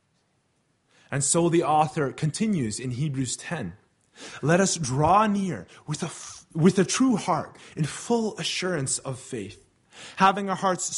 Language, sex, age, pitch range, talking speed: English, male, 20-39, 130-180 Hz, 135 wpm